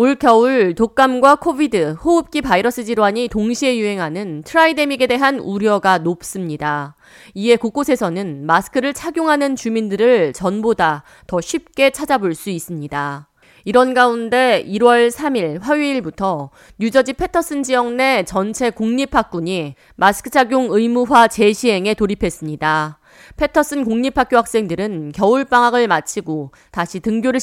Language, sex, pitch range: Korean, female, 180-260 Hz